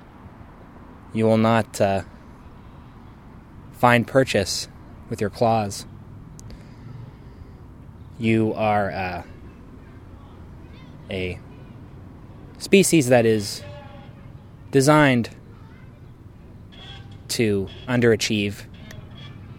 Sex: male